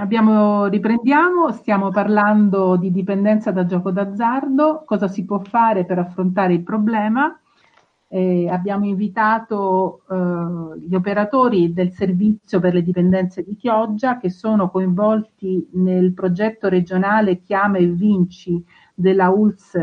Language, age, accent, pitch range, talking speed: Italian, 50-69, native, 180-215 Hz, 125 wpm